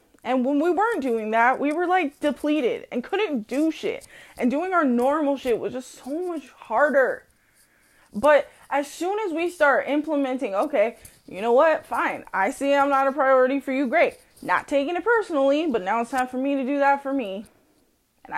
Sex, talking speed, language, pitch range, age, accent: female, 200 wpm, English, 245-315 Hz, 20-39, American